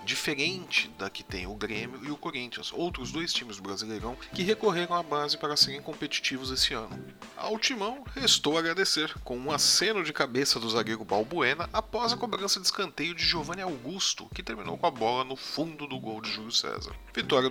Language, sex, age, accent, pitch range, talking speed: Portuguese, male, 40-59, Brazilian, 110-170 Hz, 195 wpm